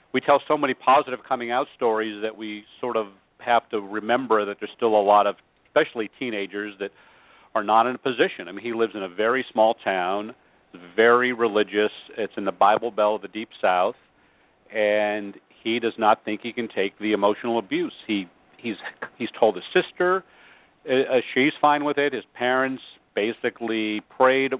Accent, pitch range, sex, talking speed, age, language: American, 105-120 Hz, male, 180 wpm, 50-69, English